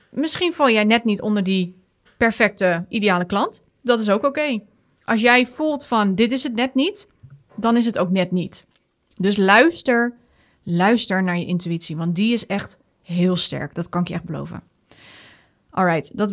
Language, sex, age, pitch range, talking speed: Dutch, female, 30-49, 185-245 Hz, 185 wpm